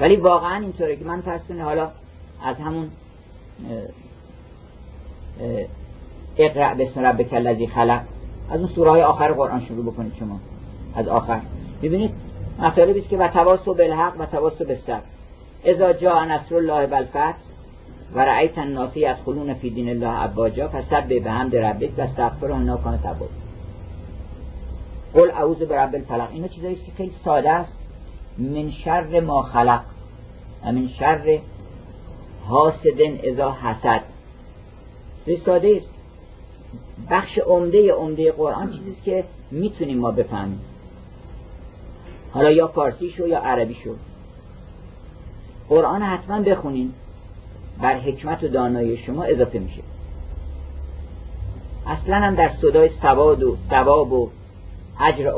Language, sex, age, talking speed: Persian, male, 50-69, 120 wpm